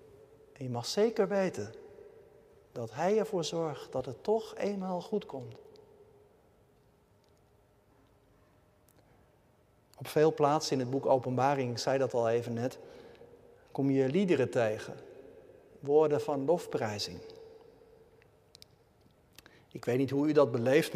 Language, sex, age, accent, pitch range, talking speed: Dutch, male, 50-69, Dutch, 135-215 Hz, 120 wpm